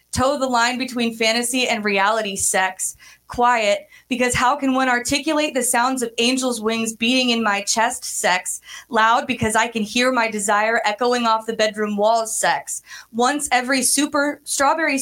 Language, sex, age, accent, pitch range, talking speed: English, female, 20-39, American, 215-250 Hz, 165 wpm